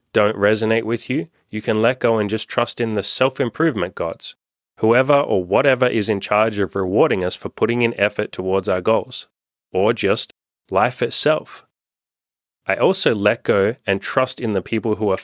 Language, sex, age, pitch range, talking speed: English, male, 30-49, 105-125 Hz, 180 wpm